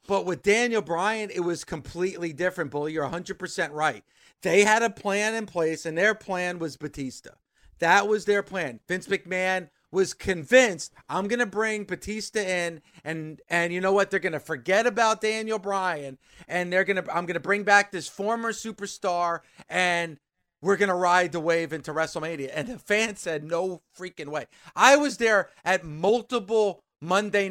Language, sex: English, male